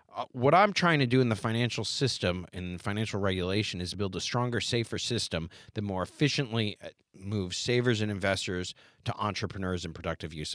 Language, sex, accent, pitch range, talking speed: English, male, American, 95-130 Hz, 170 wpm